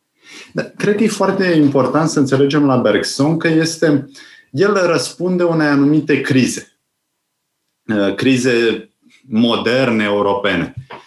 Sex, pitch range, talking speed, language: male, 125-160 Hz, 105 wpm, Romanian